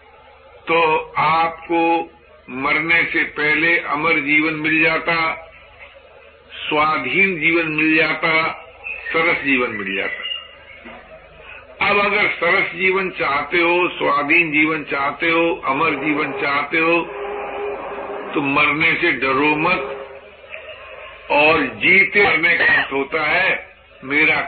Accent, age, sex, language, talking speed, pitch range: native, 50-69, male, Hindi, 110 wpm, 140-170 Hz